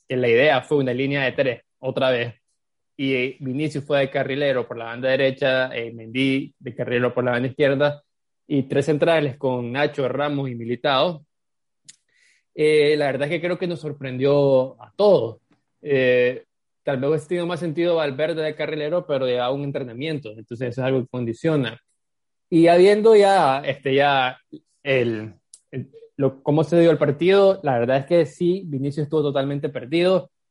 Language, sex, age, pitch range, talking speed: Spanish, male, 20-39, 130-165 Hz, 175 wpm